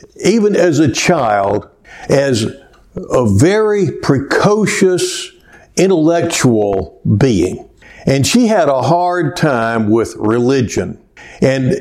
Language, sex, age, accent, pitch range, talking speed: English, male, 60-79, American, 125-170 Hz, 95 wpm